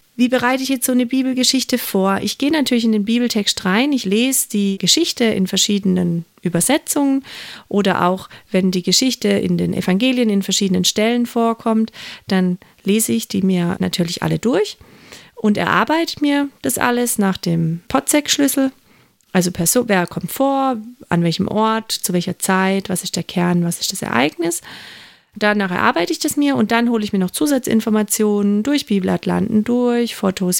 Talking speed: 170 wpm